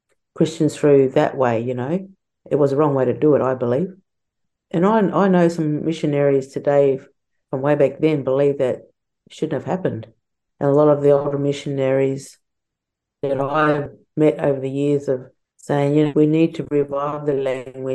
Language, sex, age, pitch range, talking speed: English, female, 50-69, 130-155 Hz, 185 wpm